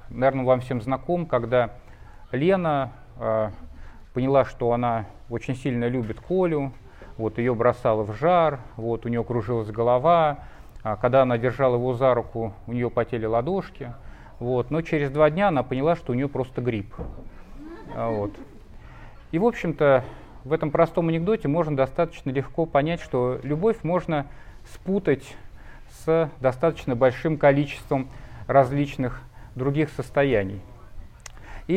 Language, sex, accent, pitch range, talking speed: Russian, male, native, 120-150 Hz, 130 wpm